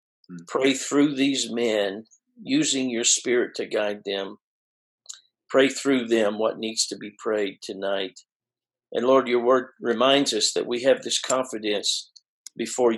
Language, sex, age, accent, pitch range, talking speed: English, male, 50-69, American, 110-135 Hz, 145 wpm